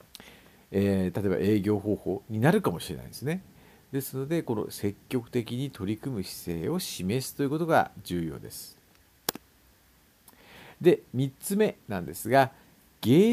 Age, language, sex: 50-69, Japanese, male